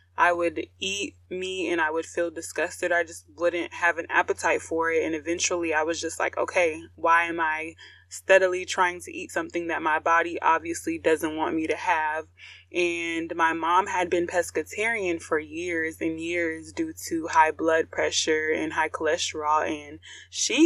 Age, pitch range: 20-39, 165-200 Hz